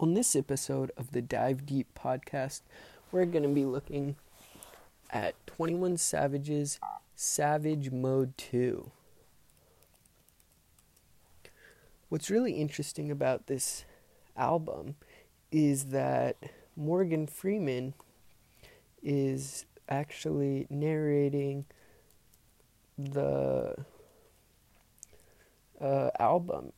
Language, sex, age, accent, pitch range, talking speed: English, male, 20-39, American, 115-150 Hz, 80 wpm